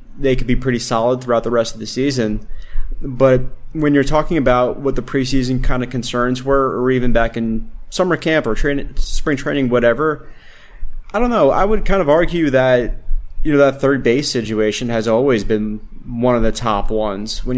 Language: English